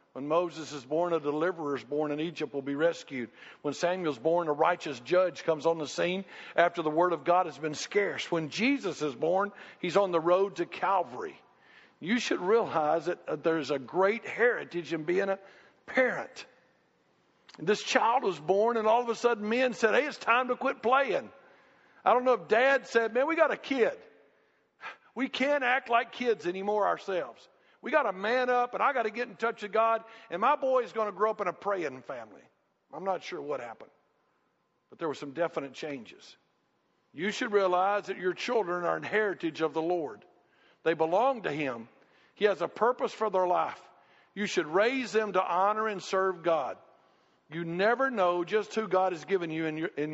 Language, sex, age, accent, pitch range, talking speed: English, male, 50-69, American, 165-225 Hz, 200 wpm